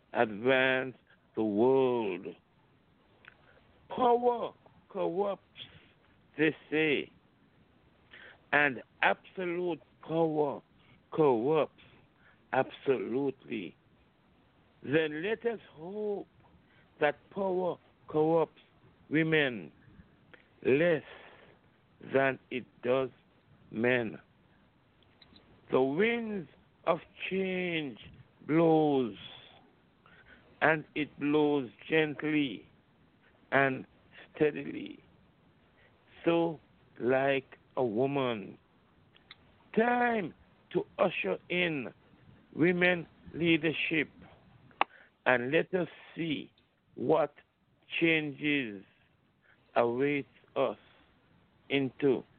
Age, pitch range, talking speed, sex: 60-79, 130-175 Hz, 65 wpm, male